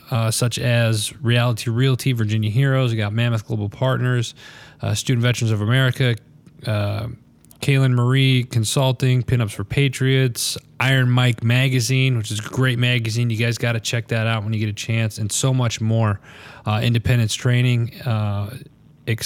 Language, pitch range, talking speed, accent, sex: English, 115-130 Hz, 165 wpm, American, male